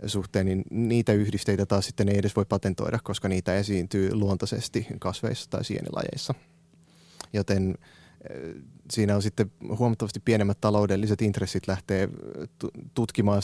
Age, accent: 30-49, native